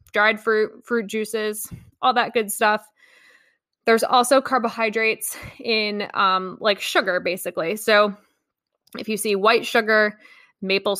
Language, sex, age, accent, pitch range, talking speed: English, female, 20-39, American, 195-230 Hz, 125 wpm